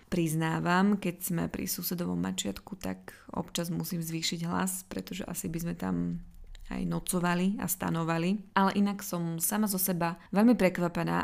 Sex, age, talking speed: female, 20-39, 150 wpm